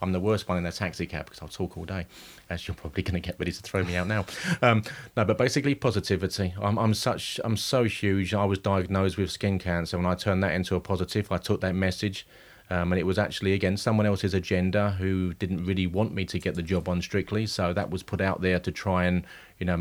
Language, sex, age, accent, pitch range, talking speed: English, male, 30-49, British, 90-105 Hz, 255 wpm